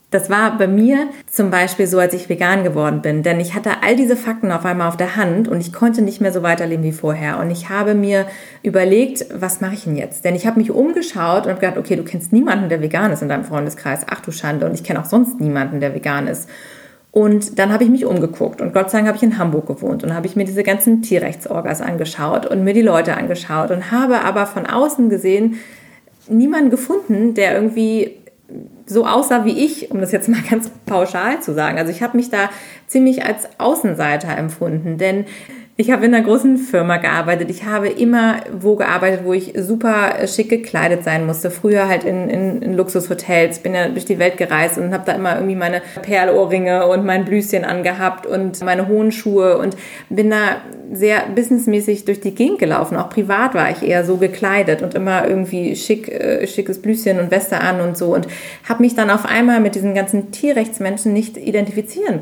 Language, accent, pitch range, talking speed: German, German, 180-225 Hz, 210 wpm